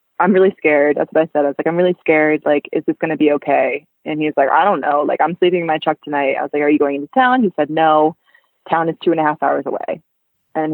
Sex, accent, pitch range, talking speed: female, American, 150-170 Hz, 300 wpm